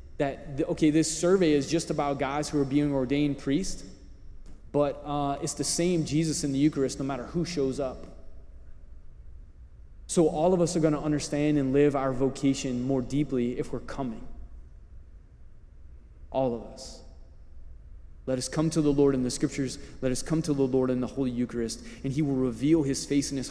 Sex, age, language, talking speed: male, 20-39, English, 190 wpm